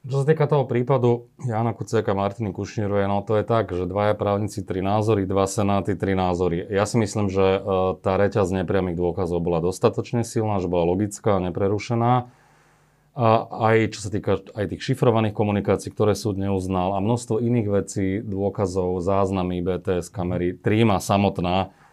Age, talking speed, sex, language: 30-49, 165 wpm, male, Slovak